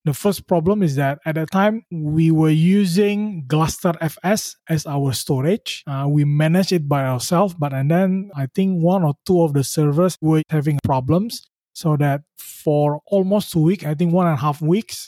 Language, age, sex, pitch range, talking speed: English, 20-39, male, 145-180 Hz, 190 wpm